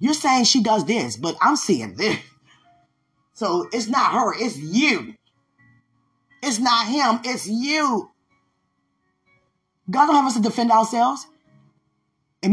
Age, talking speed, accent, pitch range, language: 20-39, 135 wpm, American, 170-260 Hz, English